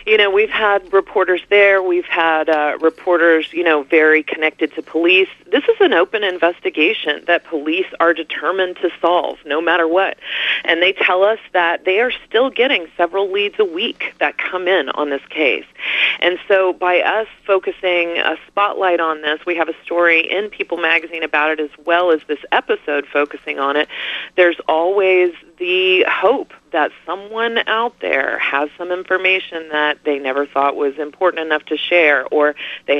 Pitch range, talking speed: 155-190 Hz, 175 wpm